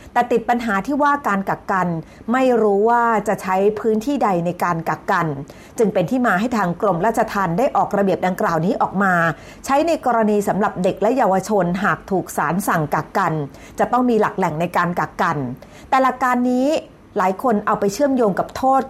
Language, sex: Thai, female